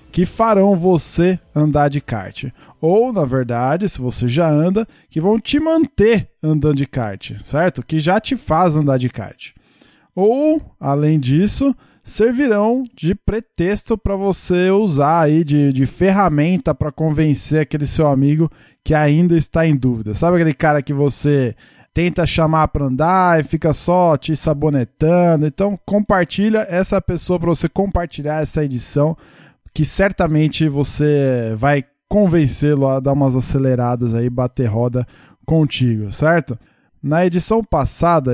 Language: Portuguese